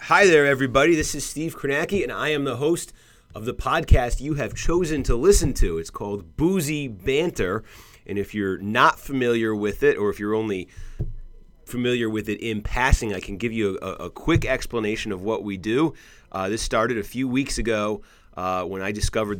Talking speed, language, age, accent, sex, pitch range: 200 wpm, English, 30-49, American, male, 95-120 Hz